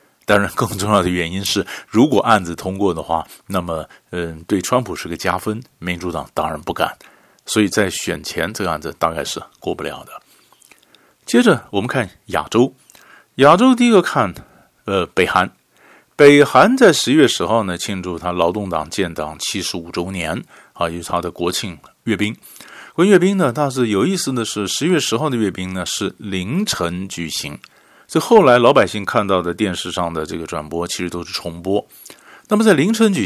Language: Chinese